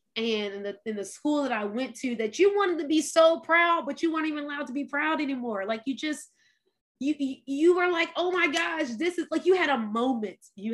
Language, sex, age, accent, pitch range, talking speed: English, female, 20-39, American, 230-290 Hz, 245 wpm